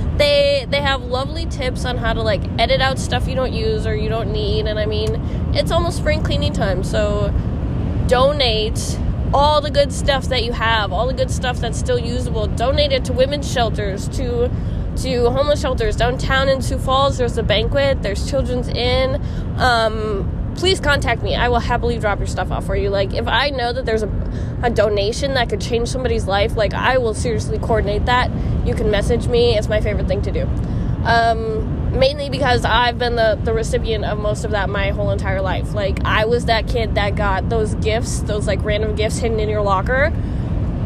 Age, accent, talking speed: 10-29, American, 205 wpm